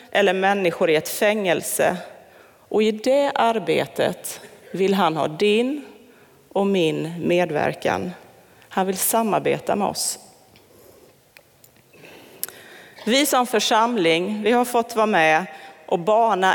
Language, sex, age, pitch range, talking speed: Swedish, female, 30-49, 175-235 Hz, 110 wpm